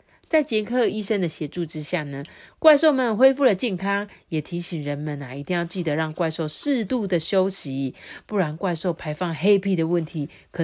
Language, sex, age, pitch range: Chinese, female, 30-49, 170-265 Hz